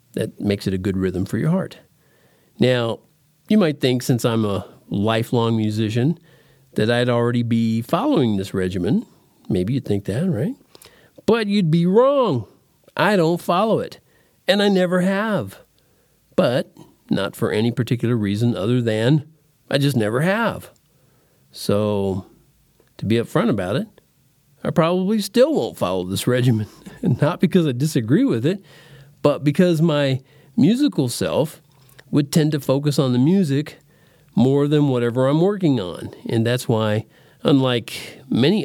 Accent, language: American, English